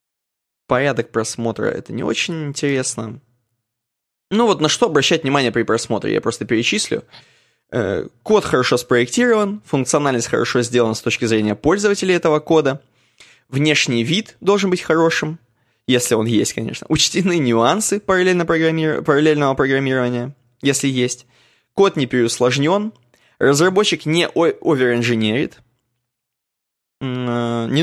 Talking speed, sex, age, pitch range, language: 110 wpm, male, 20-39, 120-155 Hz, Russian